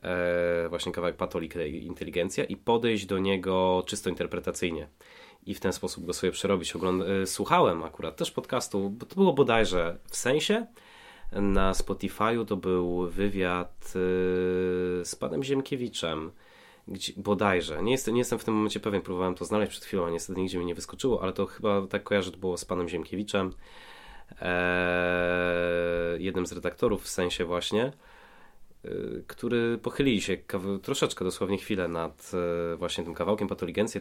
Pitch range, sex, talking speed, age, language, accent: 90-110 Hz, male, 145 wpm, 20-39, Polish, native